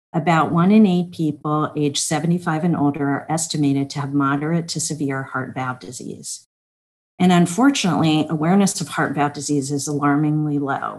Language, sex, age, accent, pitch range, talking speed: English, female, 50-69, American, 140-175 Hz, 160 wpm